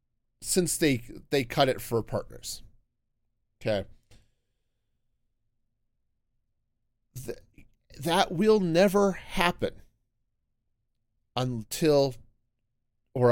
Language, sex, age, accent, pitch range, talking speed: English, male, 40-59, American, 115-150 Hz, 70 wpm